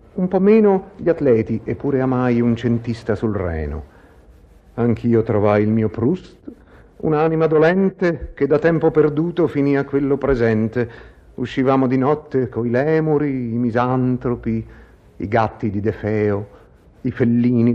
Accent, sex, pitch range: native, male, 120-175 Hz